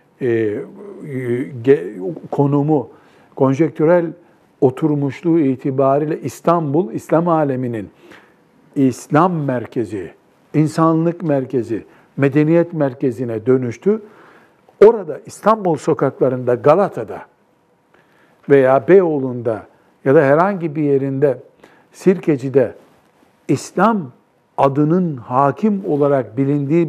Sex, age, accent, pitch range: male, 60-79, native, 140-180 Hz